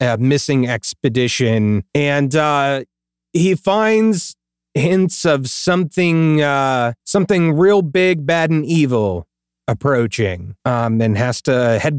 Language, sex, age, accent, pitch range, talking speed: English, male, 30-49, American, 120-155 Hz, 110 wpm